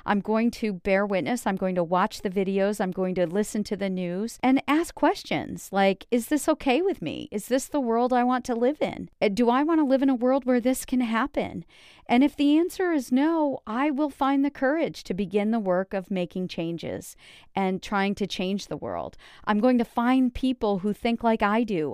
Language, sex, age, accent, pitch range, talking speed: English, female, 40-59, American, 190-260 Hz, 225 wpm